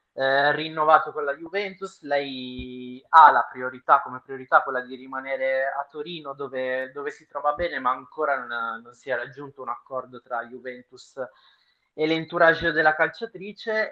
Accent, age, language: native, 20-39, Italian